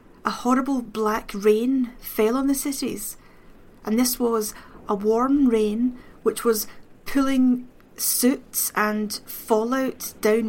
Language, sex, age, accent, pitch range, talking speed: English, female, 40-59, British, 215-245 Hz, 120 wpm